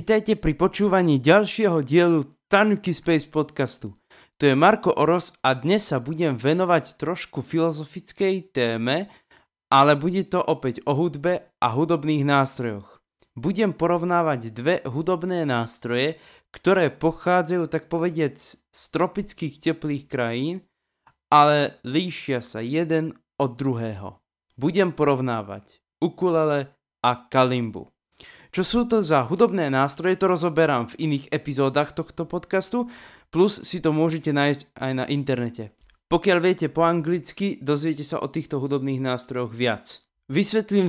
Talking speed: 125 wpm